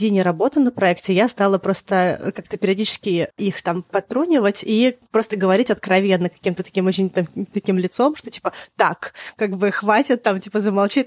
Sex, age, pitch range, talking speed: female, 20-39, 185-220 Hz, 155 wpm